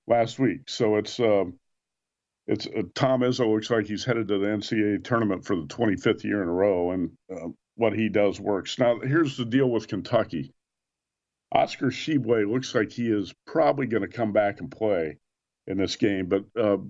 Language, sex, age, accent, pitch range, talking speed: English, male, 50-69, American, 100-125 Hz, 190 wpm